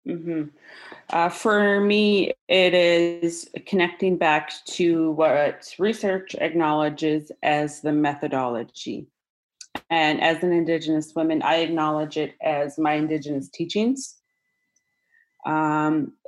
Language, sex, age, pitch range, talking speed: English, female, 30-49, 150-170 Hz, 105 wpm